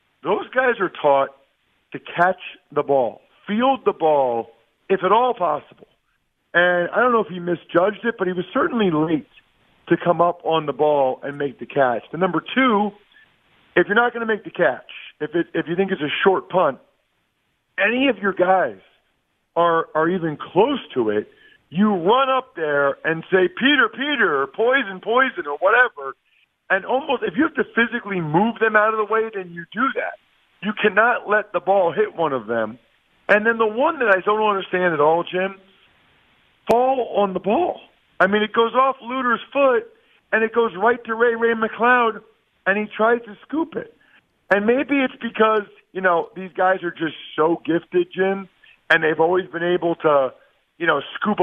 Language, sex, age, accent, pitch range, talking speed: English, male, 50-69, American, 170-225 Hz, 195 wpm